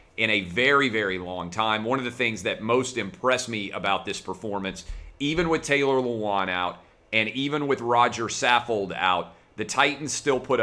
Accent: American